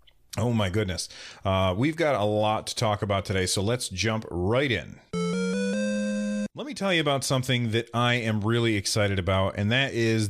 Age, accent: 30-49, American